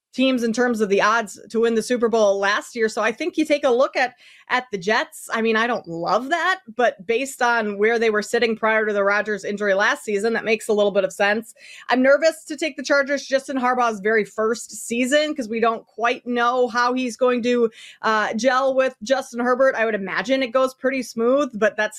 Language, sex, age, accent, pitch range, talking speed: English, female, 20-39, American, 220-275 Hz, 230 wpm